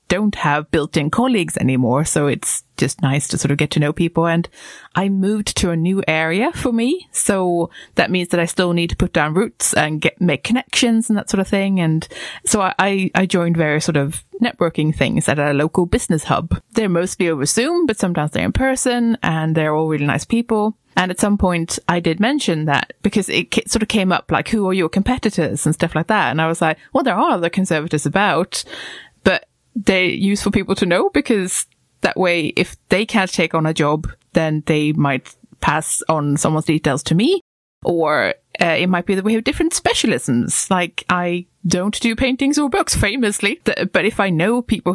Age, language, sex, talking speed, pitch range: 20-39, English, female, 210 wpm, 165-225 Hz